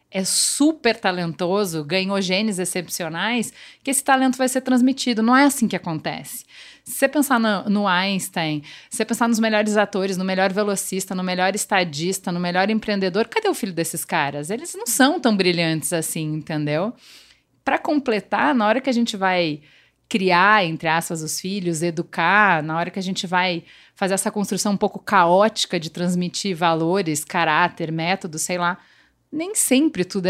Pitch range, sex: 180-265 Hz, female